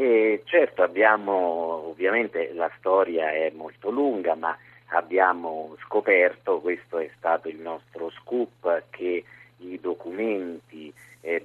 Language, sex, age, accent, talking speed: Italian, male, 50-69, native, 115 wpm